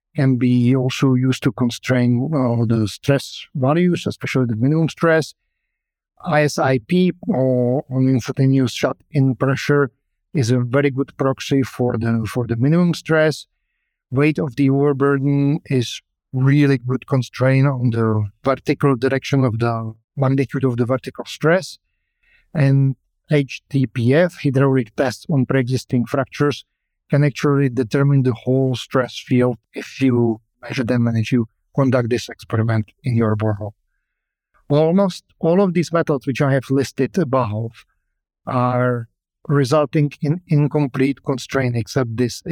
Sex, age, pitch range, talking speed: male, 50-69, 120-140 Hz, 135 wpm